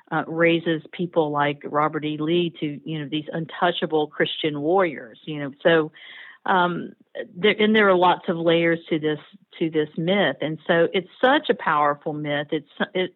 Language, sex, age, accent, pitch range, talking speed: English, female, 50-69, American, 165-200 Hz, 180 wpm